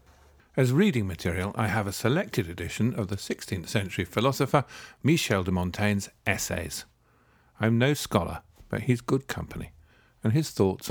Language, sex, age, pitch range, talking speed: English, male, 50-69, 95-115 Hz, 145 wpm